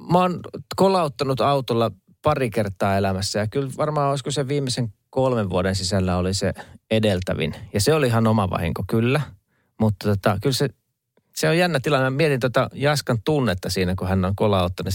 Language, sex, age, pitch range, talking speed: Finnish, male, 30-49, 100-125 Hz, 175 wpm